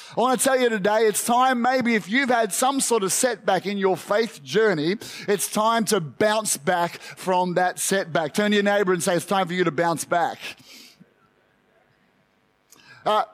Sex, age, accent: male, 30-49, Australian